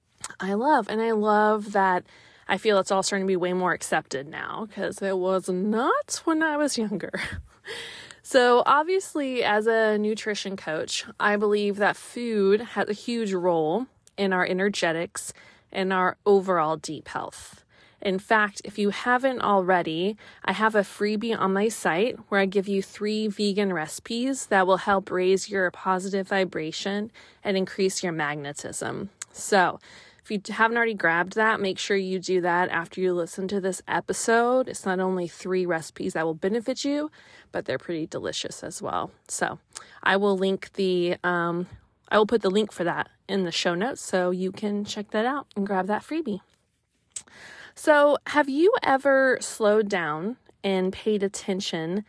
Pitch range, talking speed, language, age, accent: 185-220 Hz, 170 wpm, English, 20-39, American